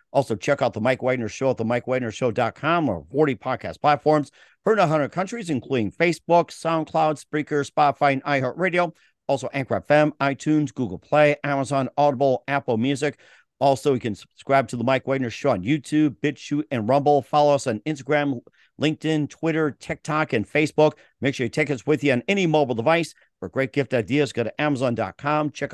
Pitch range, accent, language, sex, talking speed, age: 125-150 Hz, American, English, male, 180 wpm, 50-69